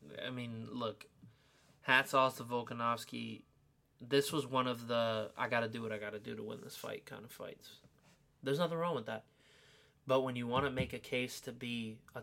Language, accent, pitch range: English, American, 120-145 Hz